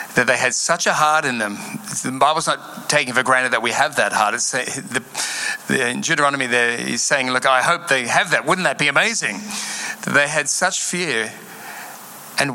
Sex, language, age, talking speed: male, English, 40-59, 210 wpm